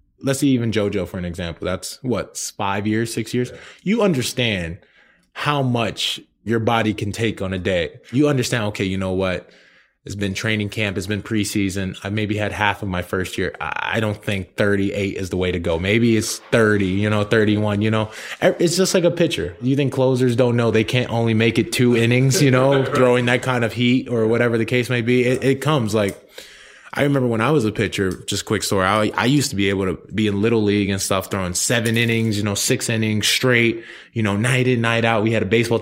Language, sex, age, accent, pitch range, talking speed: English, male, 20-39, American, 100-120 Hz, 230 wpm